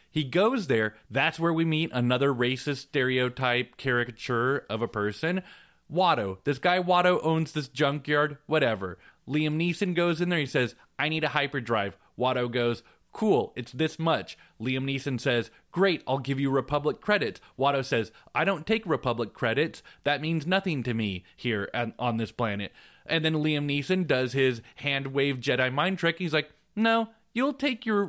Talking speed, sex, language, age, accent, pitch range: 175 wpm, male, English, 20-39, American, 130-190 Hz